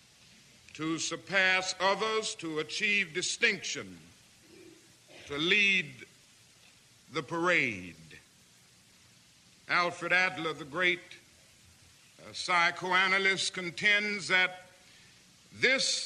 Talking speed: 65 wpm